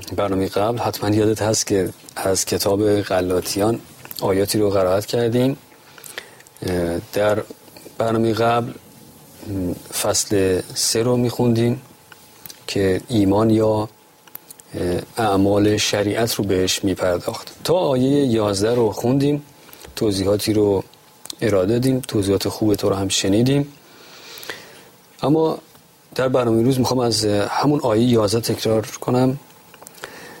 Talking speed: 105 wpm